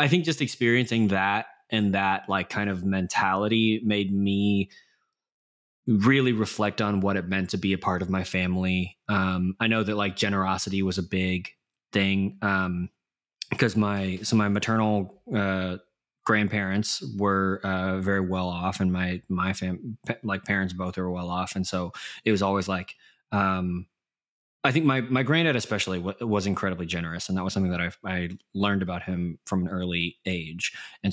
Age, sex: 20-39, male